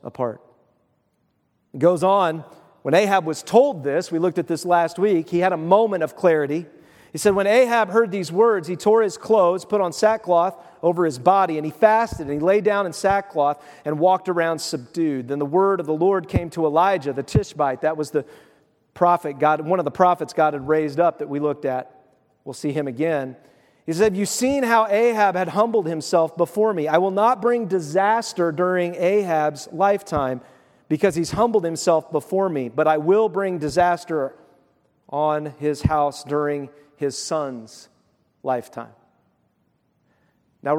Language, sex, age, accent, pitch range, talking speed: English, male, 40-59, American, 150-195 Hz, 180 wpm